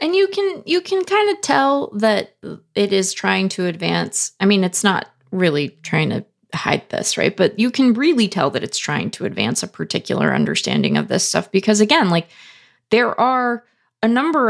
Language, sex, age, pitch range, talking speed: English, female, 20-39, 170-210 Hz, 195 wpm